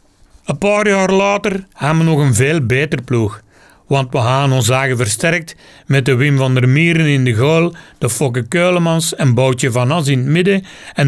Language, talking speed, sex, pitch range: Dutch, 200 wpm, male, 130-180 Hz